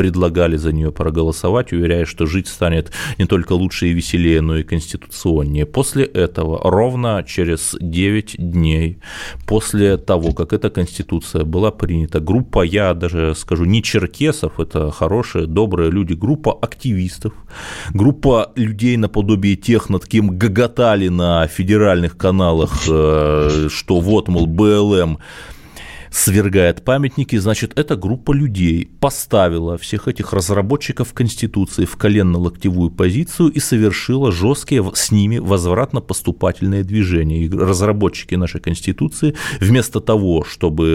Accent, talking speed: native, 120 wpm